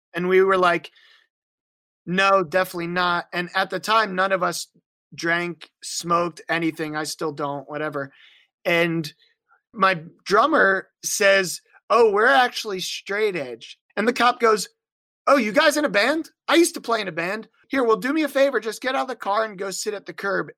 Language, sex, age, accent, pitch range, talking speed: English, male, 30-49, American, 165-230 Hz, 190 wpm